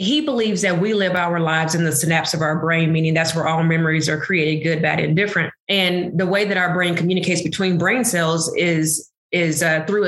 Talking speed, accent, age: 225 wpm, American, 20-39